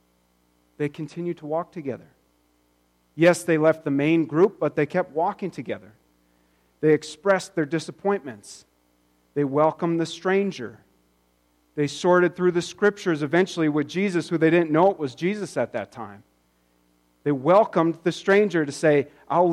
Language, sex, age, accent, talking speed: English, male, 40-59, American, 150 wpm